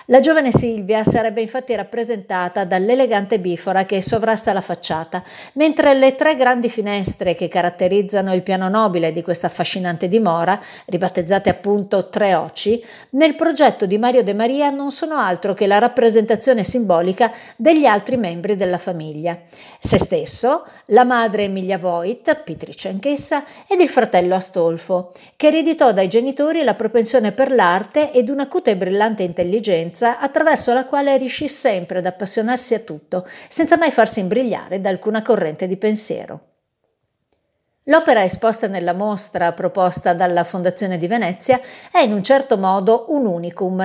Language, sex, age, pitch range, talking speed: Italian, female, 50-69, 185-250 Hz, 145 wpm